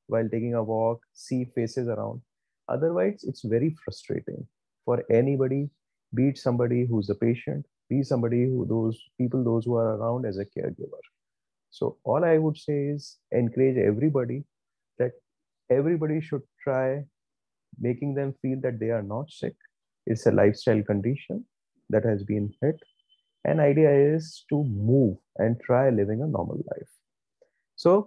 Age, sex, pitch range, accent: 30-49, male, 105-130 Hz, Indian